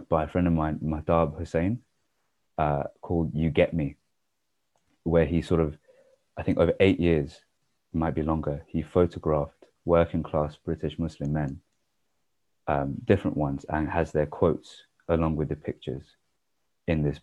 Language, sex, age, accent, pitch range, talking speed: English, male, 30-49, British, 75-90 Hz, 155 wpm